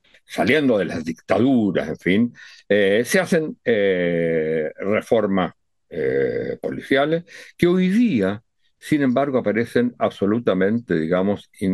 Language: Spanish